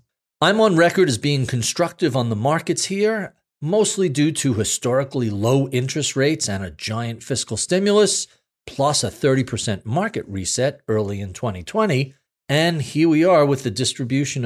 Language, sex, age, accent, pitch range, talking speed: English, male, 40-59, American, 115-170 Hz, 155 wpm